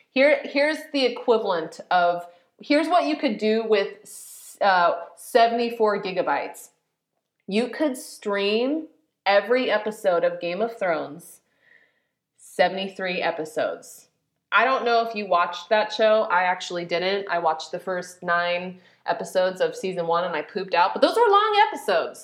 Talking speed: 145 wpm